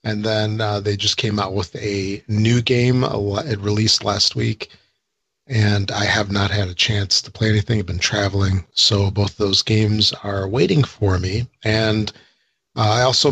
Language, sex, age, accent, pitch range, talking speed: English, male, 40-59, American, 105-125 Hz, 180 wpm